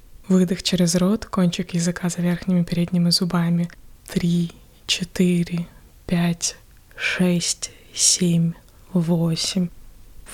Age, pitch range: 20-39, 165-180 Hz